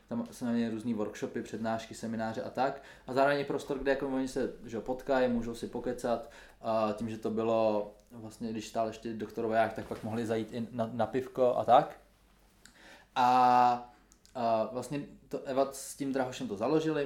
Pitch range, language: 115-145 Hz, Czech